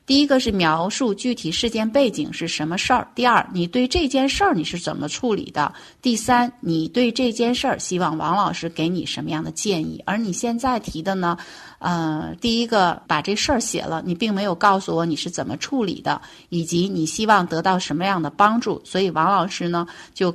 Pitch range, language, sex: 165-235 Hz, Chinese, female